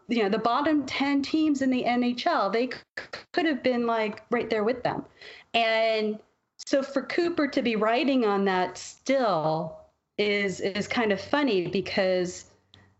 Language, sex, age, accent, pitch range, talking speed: English, female, 30-49, American, 185-240 Hz, 160 wpm